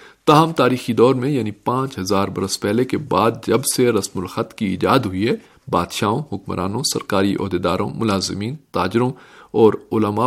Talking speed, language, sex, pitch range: 160 wpm, Urdu, male, 105-135 Hz